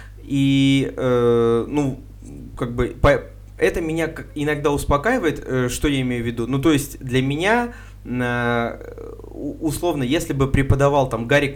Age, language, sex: 20-39, Russian, male